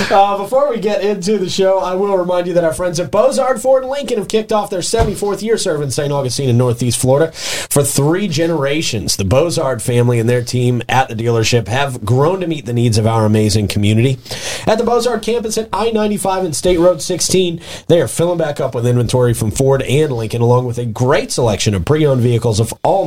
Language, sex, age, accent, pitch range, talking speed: English, male, 30-49, American, 120-180 Hz, 220 wpm